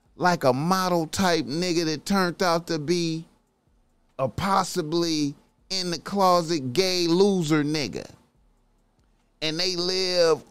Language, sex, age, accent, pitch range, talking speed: English, male, 30-49, American, 160-190 Hz, 120 wpm